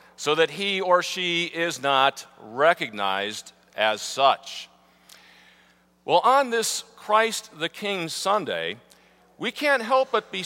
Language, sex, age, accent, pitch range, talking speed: English, male, 50-69, American, 165-230 Hz, 125 wpm